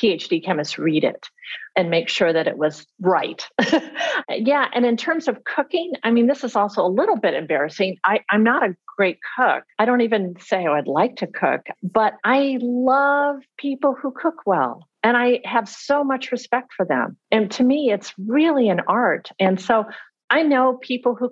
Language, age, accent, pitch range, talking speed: English, 50-69, American, 190-265 Hz, 190 wpm